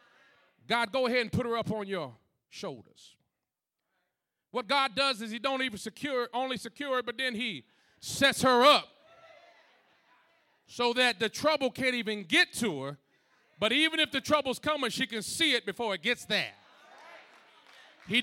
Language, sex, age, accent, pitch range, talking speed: English, male, 40-59, American, 225-280 Hz, 170 wpm